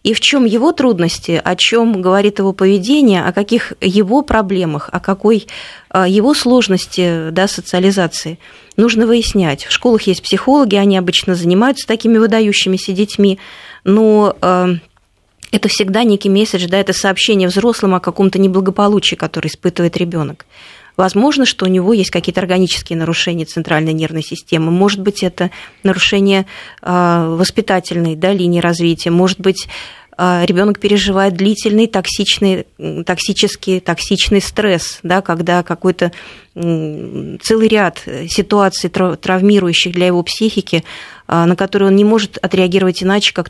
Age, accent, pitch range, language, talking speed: 20-39, native, 175-205 Hz, Russian, 130 wpm